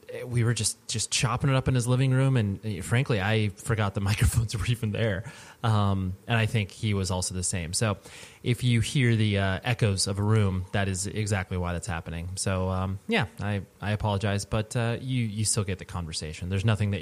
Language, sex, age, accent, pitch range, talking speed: English, male, 20-39, American, 100-120 Hz, 220 wpm